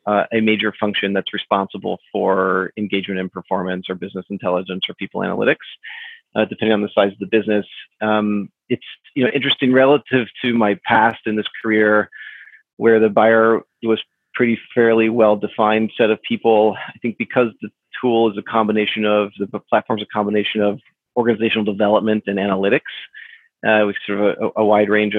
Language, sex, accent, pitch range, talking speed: English, male, American, 105-115 Hz, 175 wpm